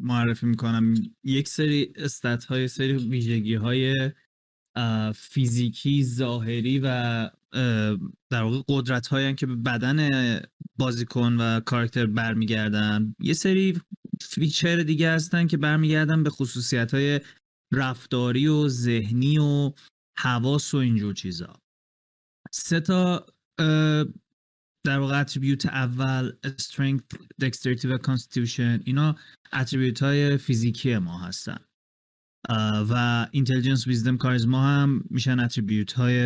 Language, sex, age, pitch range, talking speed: Persian, male, 30-49, 120-145 Hz, 100 wpm